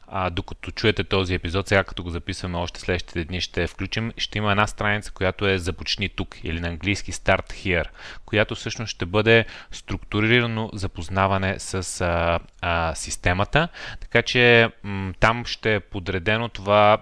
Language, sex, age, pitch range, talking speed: Bulgarian, male, 30-49, 90-110 Hz, 160 wpm